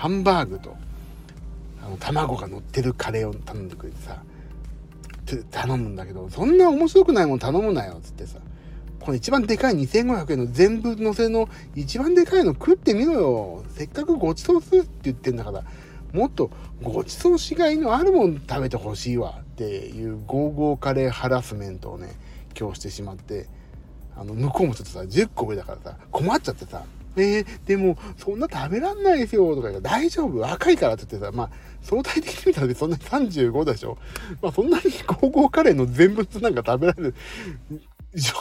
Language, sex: Japanese, male